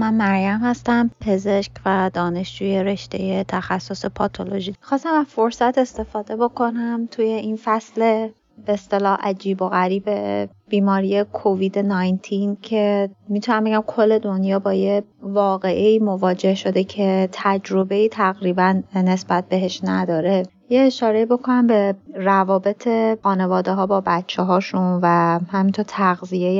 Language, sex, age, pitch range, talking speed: Persian, female, 30-49, 190-215 Hz, 120 wpm